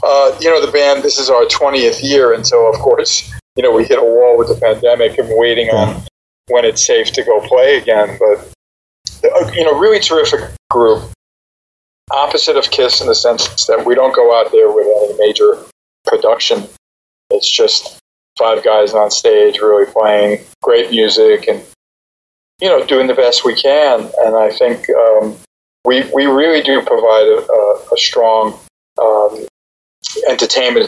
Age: 40-59